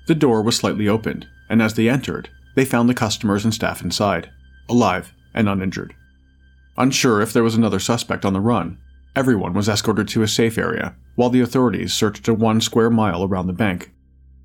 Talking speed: 190 wpm